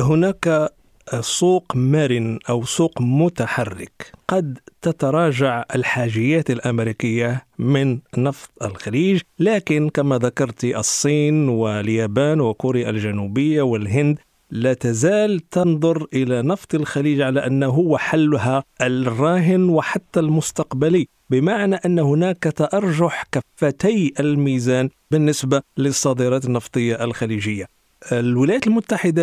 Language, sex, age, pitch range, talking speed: Arabic, male, 50-69, 125-165 Hz, 90 wpm